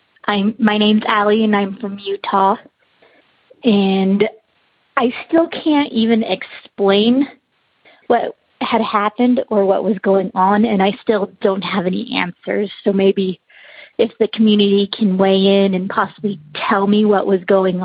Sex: female